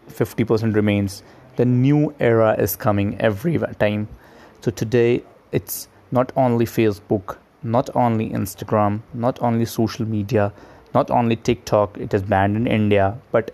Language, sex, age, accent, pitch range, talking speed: Hindi, male, 20-39, native, 105-120 Hz, 140 wpm